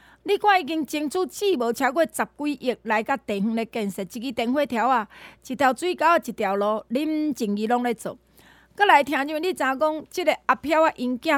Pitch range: 225-315 Hz